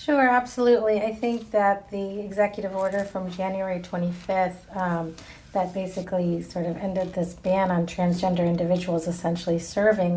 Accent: American